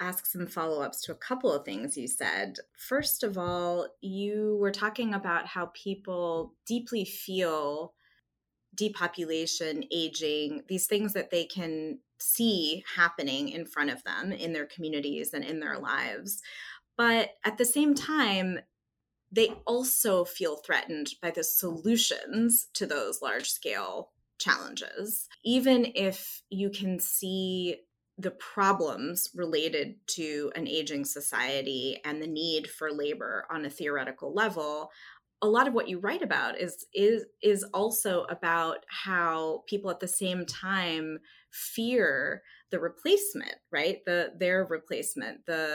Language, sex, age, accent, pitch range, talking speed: English, female, 20-39, American, 160-210 Hz, 135 wpm